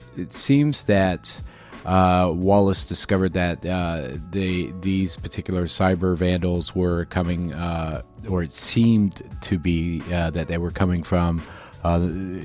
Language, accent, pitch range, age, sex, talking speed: English, American, 85-105 Hz, 40-59, male, 130 wpm